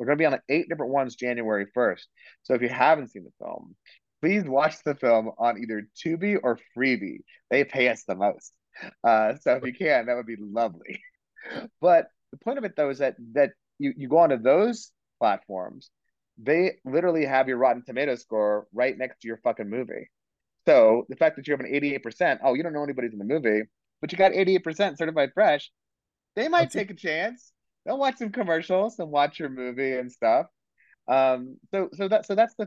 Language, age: English, 30-49